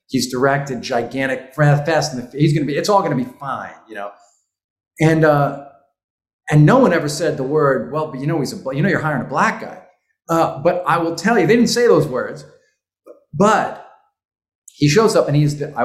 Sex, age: male, 40-59